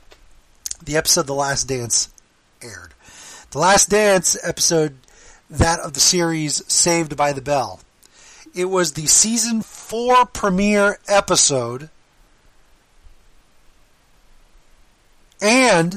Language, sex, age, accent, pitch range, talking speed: English, male, 40-59, American, 140-195 Hz, 100 wpm